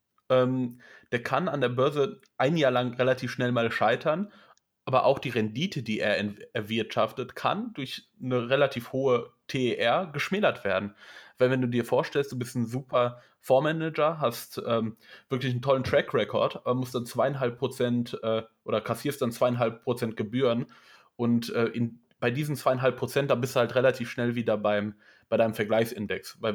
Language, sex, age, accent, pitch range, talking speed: German, male, 20-39, German, 110-130 Hz, 170 wpm